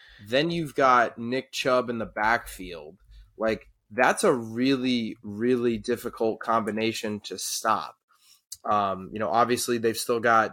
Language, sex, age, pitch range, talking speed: English, male, 20-39, 105-120 Hz, 135 wpm